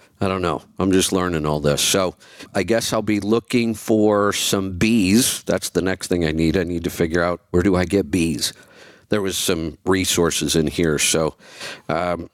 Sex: male